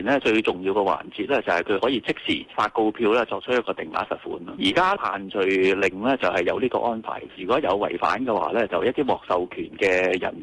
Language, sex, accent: Chinese, male, native